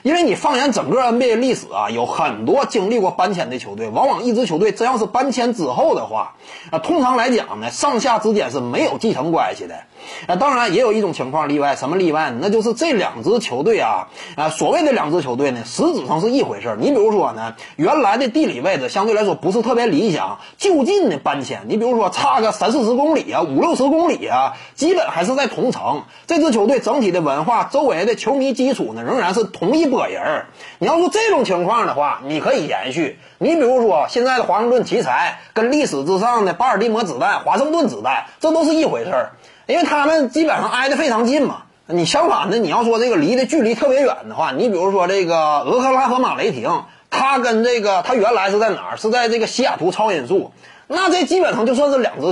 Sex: male